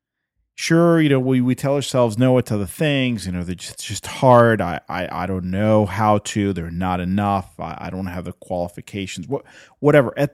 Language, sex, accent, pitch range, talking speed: English, male, American, 95-130 Hz, 210 wpm